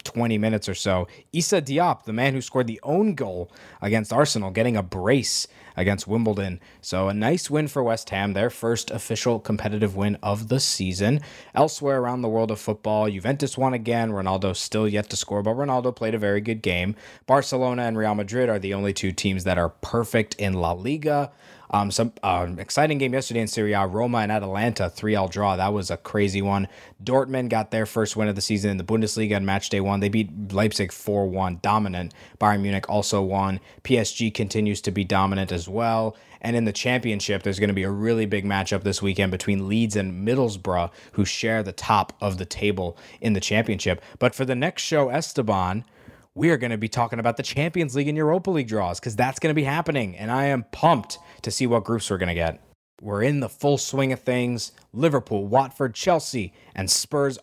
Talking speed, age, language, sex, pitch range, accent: 210 wpm, 20-39, English, male, 100-125 Hz, American